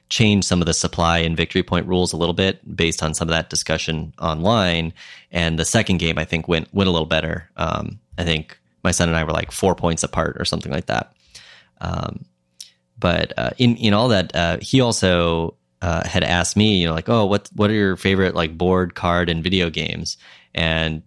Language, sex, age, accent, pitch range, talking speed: English, male, 20-39, American, 80-95 Hz, 215 wpm